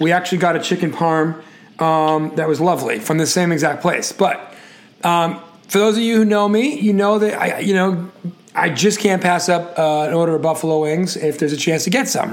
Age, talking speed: 30-49, 235 wpm